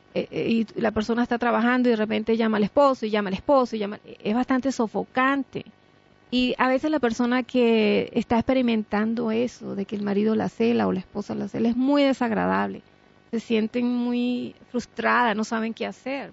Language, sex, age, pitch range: English, female, 30-49, 210-245 Hz